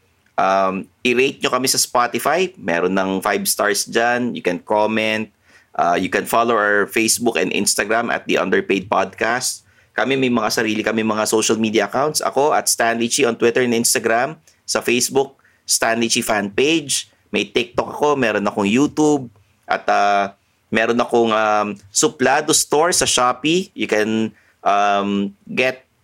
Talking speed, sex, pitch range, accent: 155 wpm, male, 105-130 Hz, Filipino